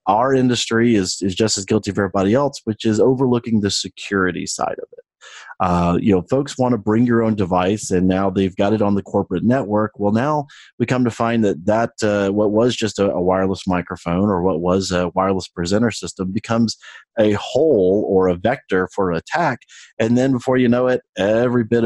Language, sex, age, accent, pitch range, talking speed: English, male, 30-49, American, 95-115 Hz, 210 wpm